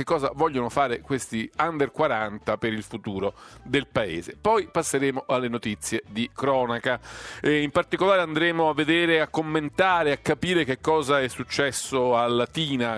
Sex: male